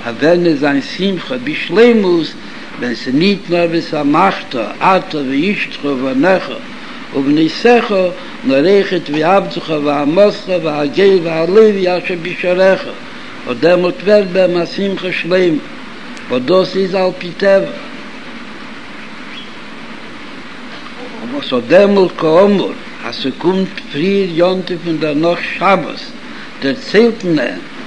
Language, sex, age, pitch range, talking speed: Hebrew, male, 60-79, 165-235 Hz, 85 wpm